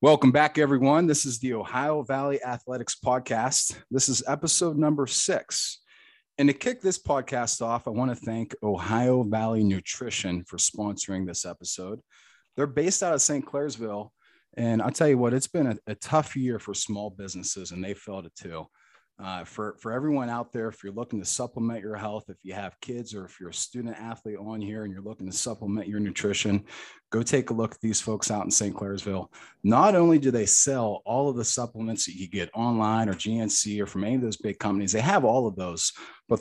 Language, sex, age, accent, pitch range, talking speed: English, male, 30-49, American, 100-130 Hz, 210 wpm